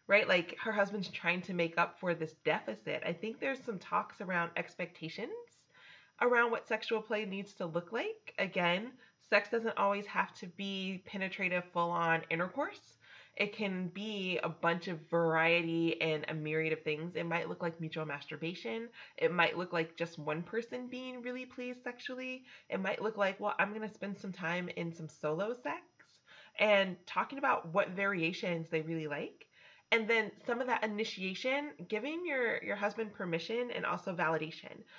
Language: English